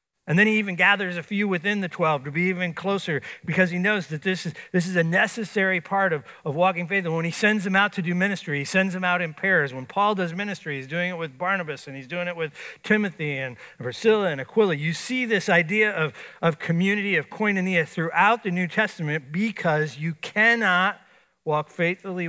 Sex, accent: male, American